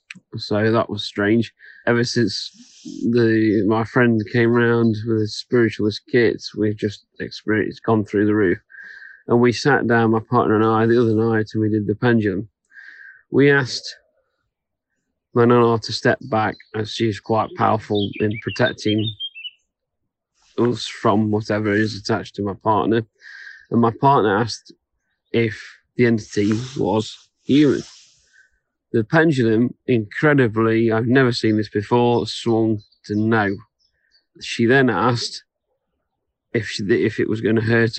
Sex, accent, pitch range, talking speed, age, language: male, British, 110-120 Hz, 140 wpm, 30-49, English